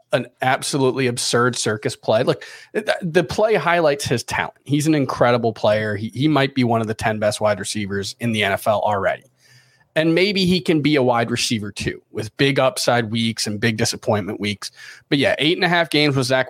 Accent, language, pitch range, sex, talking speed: American, English, 115-145 Hz, male, 205 wpm